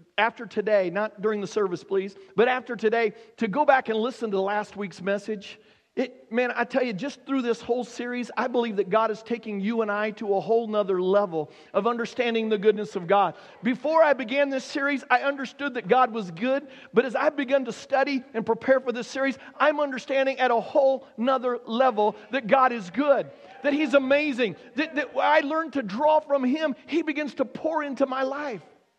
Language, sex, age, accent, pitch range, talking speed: English, male, 40-59, American, 230-285 Hz, 205 wpm